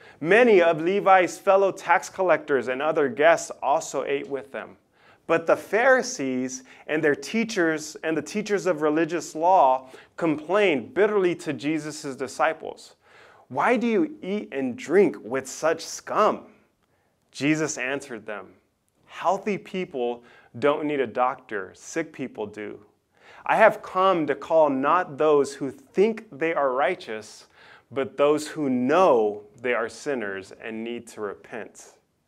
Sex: male